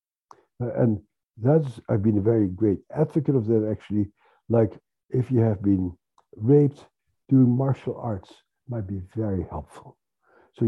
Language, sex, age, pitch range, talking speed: English, male, 60-79, 95-120 Hz, 140 wpm